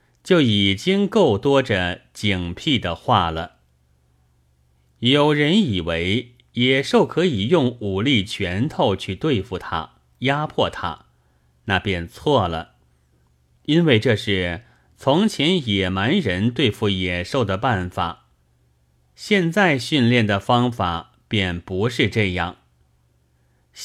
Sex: male